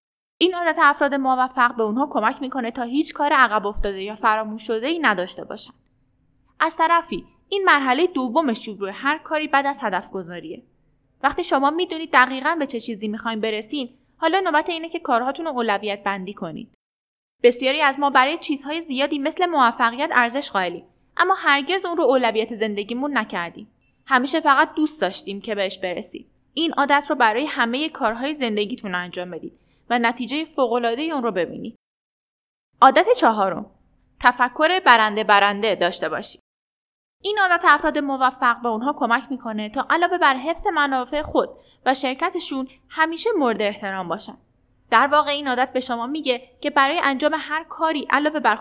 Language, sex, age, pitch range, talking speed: Persian, female, 10-29, 225-310 Hz, 160 wpm